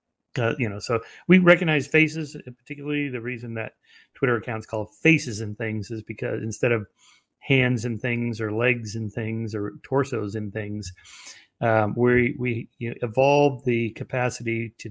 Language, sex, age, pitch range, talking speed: English, male, 40-59, 110-135 Hz, 155 wpm